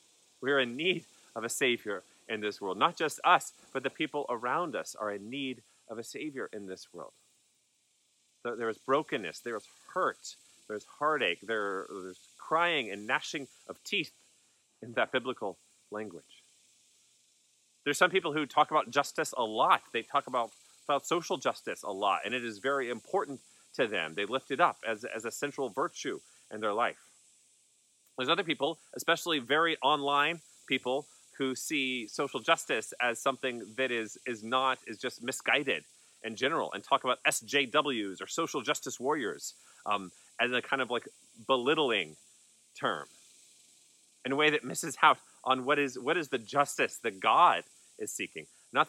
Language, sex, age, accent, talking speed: English, male, 30-49, American, 170 wpm